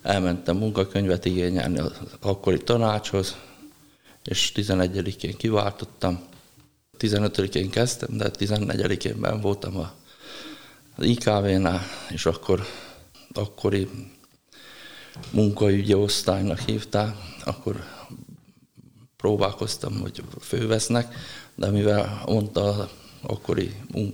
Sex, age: male, 50-69